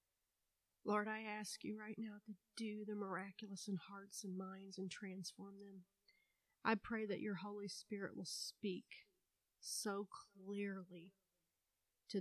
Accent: American